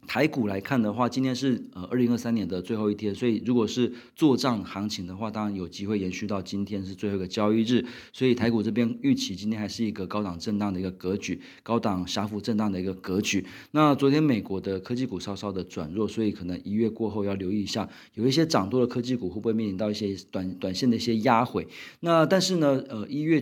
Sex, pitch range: male, 100-120 Hz